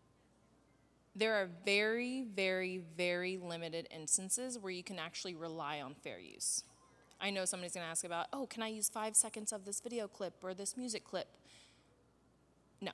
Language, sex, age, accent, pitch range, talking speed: English, female, 20-39, American, 185-220 Hz, 170 wpm